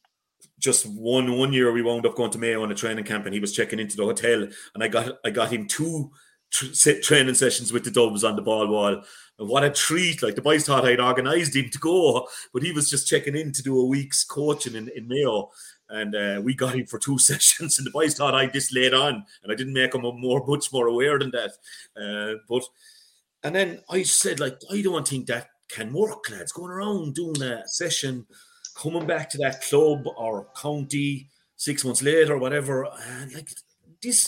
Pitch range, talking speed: 120-155 Hz, 220 wpm